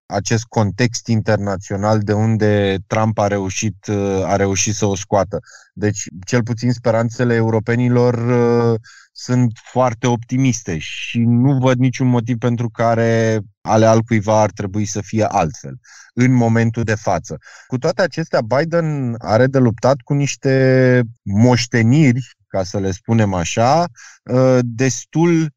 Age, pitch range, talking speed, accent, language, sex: 20-39, 100-120 Hz, 135 wpm, native, Romanian, male